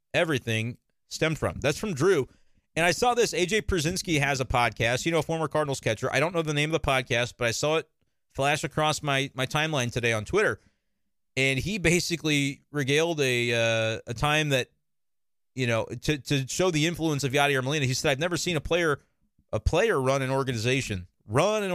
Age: 30-49